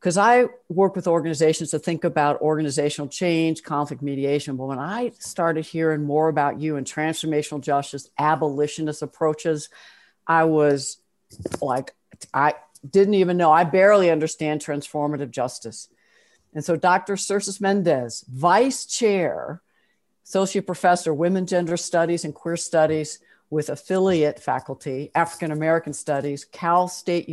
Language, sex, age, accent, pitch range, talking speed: English, female, 60-79, American, 145-180 Hz, 130 wpm